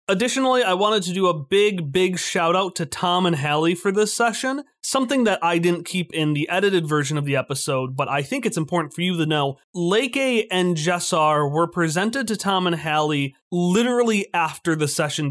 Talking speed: 195 wpm